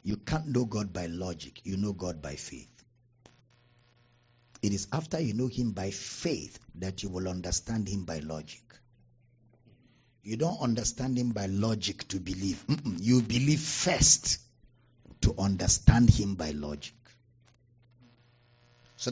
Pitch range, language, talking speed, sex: 100-130 Hz, English, 140 wpm, male